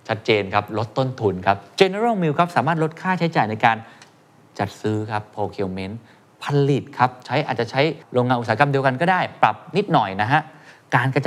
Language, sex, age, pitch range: Thai, male, 20-39, 115-160 Hz